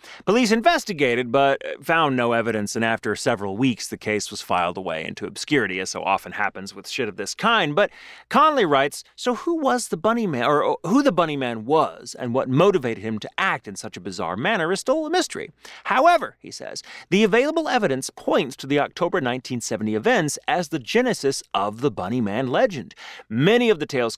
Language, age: English, 30-49